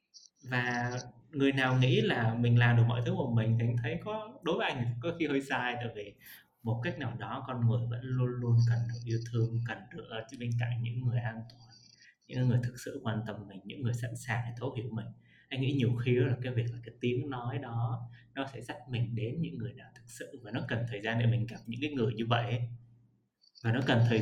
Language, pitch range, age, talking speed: Vietnamese, 115-130 Hz, 20-39, 250 wpm